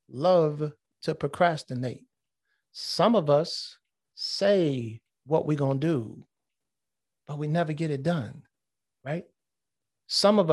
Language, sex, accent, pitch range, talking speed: English, male, American, 150-185 Hz, 120 wpm